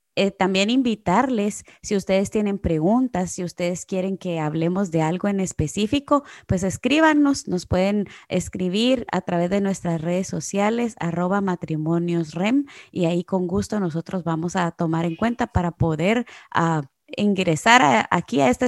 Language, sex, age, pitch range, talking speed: Spanish, female, 20-39, 170-215 Hz, 150 wpm